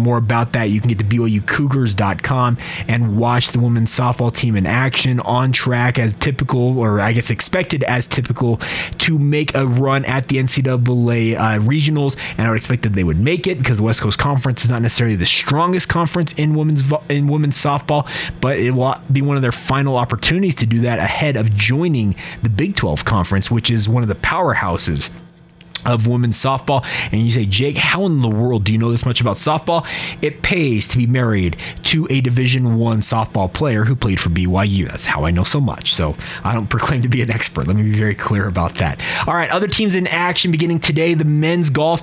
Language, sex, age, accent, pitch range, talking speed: English, male, 30-49, American, 115-150 Hz, 215 wpm